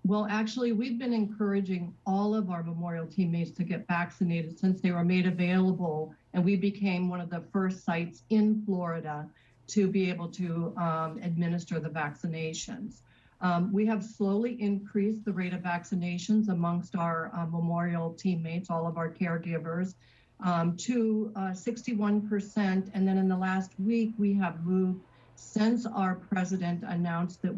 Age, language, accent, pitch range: 50-69, English, American, 170-200 Hz